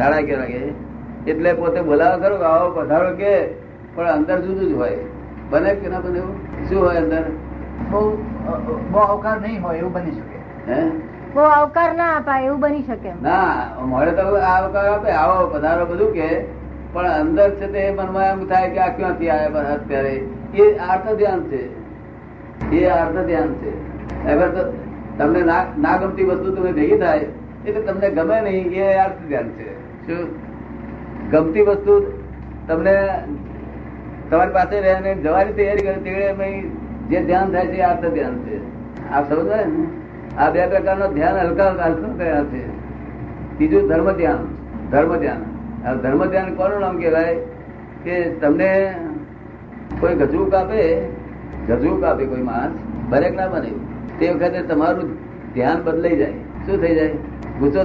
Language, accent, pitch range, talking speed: Gujarati, native, 165-200 Hz, 65 wpm